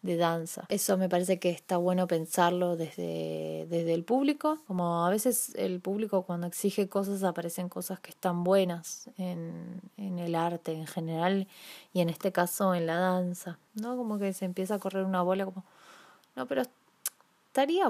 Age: 20-39